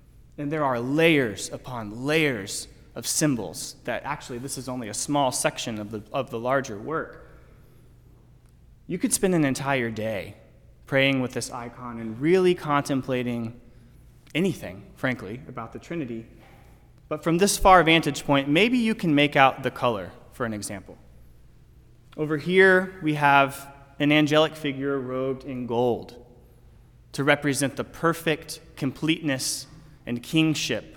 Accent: American